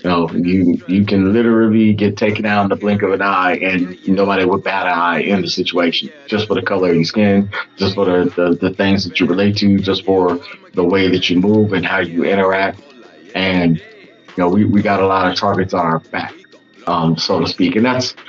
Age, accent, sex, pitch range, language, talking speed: 30-49, American, male, 90-105 Hz, English, 230 wpm